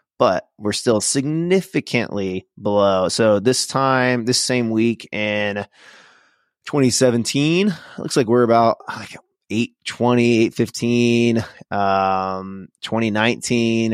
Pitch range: 100-125 Hz